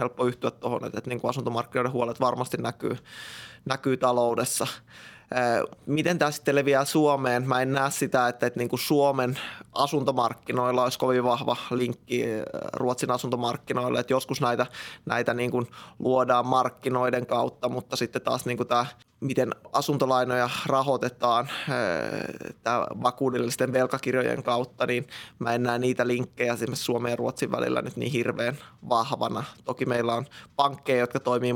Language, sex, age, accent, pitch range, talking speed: Finnish, male, 20-39, native, 120-130 Hz, 125 wpm